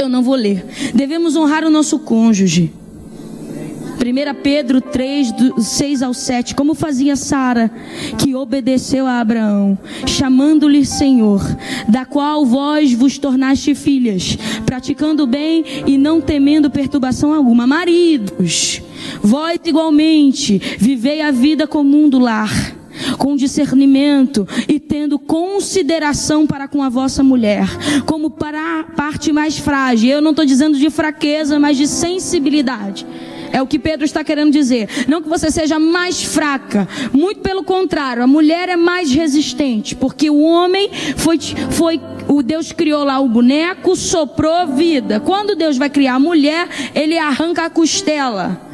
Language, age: Portuguese, 20-39